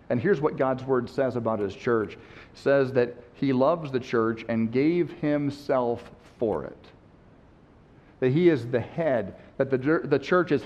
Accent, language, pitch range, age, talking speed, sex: American, English, 115-140 Hz, 50-69, 175 wpm, male